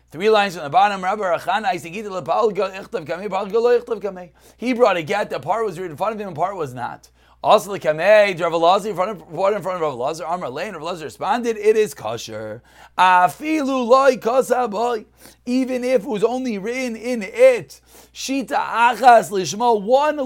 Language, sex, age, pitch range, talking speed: English, male, 30-49, 185-240 Hz, 140 wpm